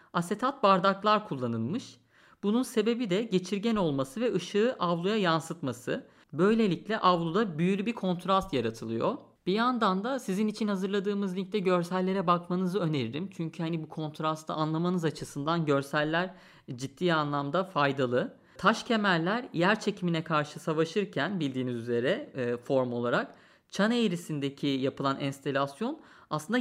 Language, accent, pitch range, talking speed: Turkish, native, 145-200 Hz, 120 wpm